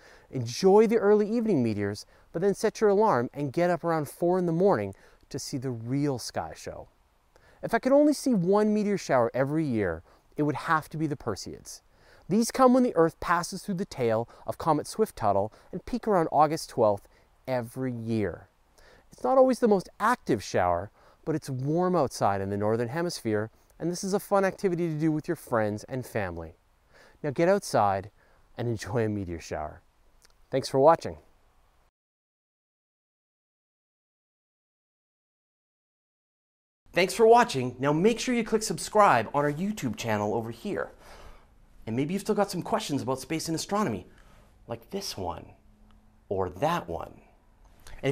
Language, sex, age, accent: English, male, 30-49, American